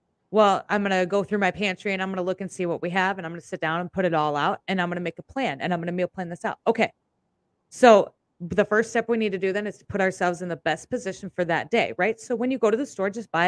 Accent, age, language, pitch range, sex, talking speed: American, 30-49, English, 185-225 Hz, female, 335 wpm